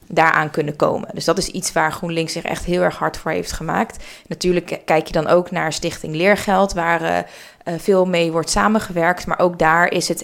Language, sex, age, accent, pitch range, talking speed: Dutch, female, 20-39, Dutch, 170-195 Hz, 210 wpm